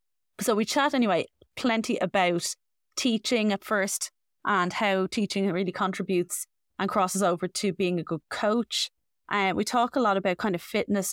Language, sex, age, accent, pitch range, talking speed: English, female, 20-39, Irish, 180-205 Hz, 175 wpm